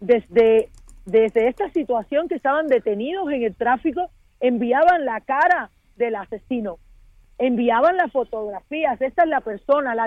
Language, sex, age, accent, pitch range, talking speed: Spanish, female, 40-59, American, 225-285 Hz, 135 wpm